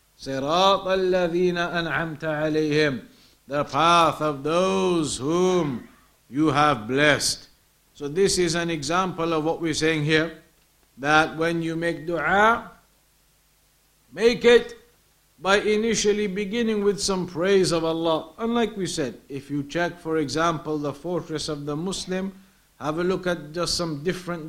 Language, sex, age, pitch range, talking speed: English, male, 50-69, 160-185 Hz, 140 wpm